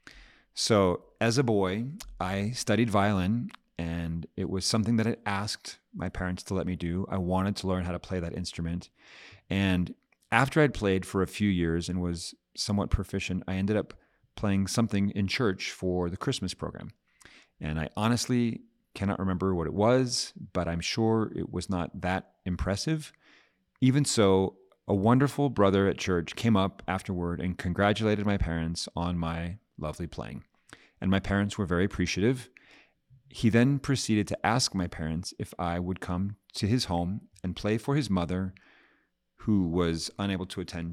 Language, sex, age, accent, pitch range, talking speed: English, male, 40-59, American, 85-105 Hz, 170 wpm